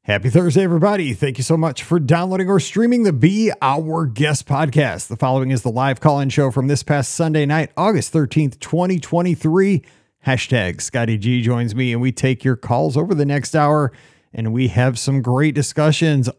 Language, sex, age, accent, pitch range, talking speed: English, male, 40-59, American, 130-160 Hz, 185 wpm